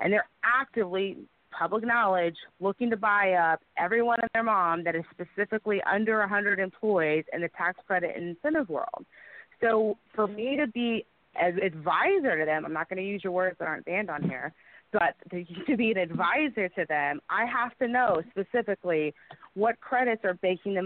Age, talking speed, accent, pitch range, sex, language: 30-49, 185 wpm, American, 175-225 Hz, female, English